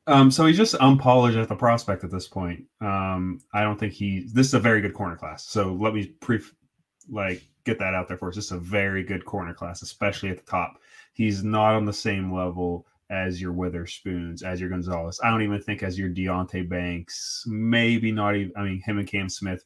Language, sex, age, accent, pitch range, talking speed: English, male, 20-39, American, 90-105 Hz, 225 wpm